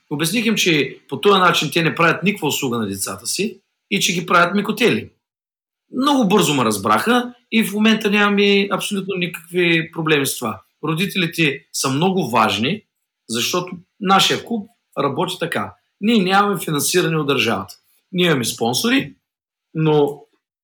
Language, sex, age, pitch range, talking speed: Bulgarian, male, 40-59, 135-195 Hz, 145 wpm